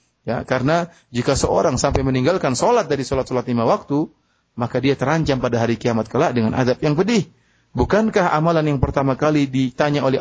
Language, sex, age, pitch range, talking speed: Malay, male, 30-49, 125-155 Hz, 170 wpm